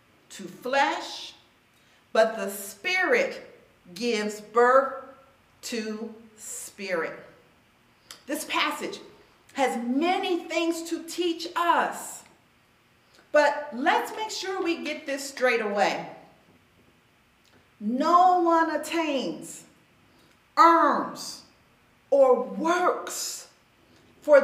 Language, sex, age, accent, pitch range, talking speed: English, female, 40-59, American, 245-330 Hz, 80 wpm